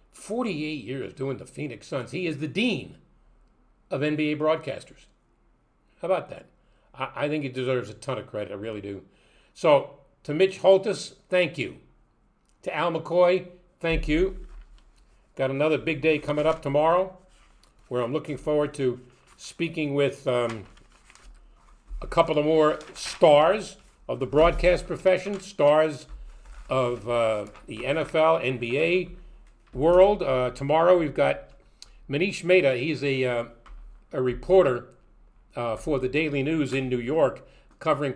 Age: 50-69